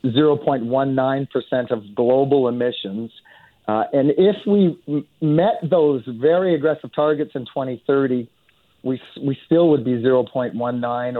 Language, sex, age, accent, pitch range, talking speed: English, male, 40-59, American, 120-155 Hz, 115 wpm